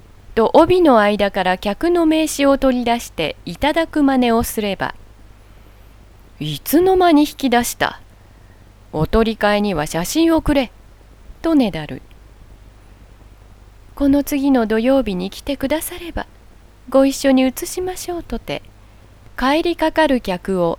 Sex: female